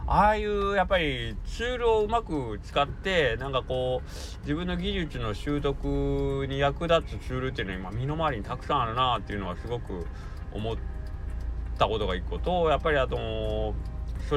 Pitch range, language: 85-135 Hz, Japanese